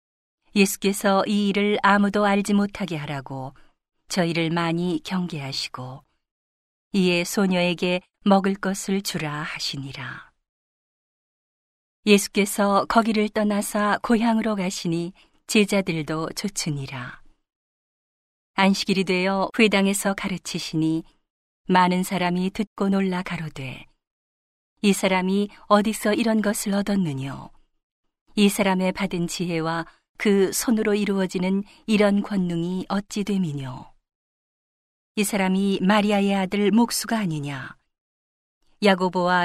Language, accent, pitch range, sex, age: Korean, native, 170-205 Hz, female, 40-59